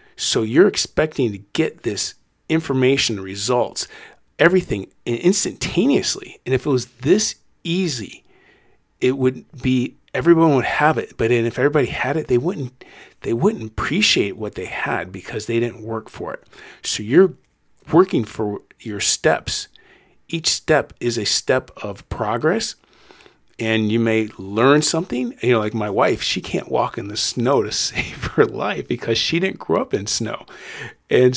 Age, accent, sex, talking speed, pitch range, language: 40-59, American, male, 160 wpm, 110-140 Hz, English